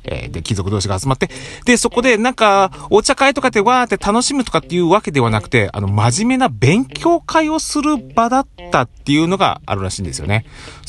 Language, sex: Japanese, male